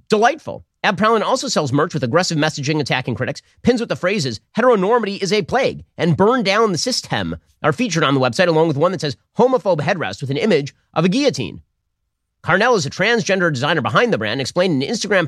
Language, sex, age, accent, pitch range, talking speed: English, male, 40-59, American, 105-170 Hz, 215 wpm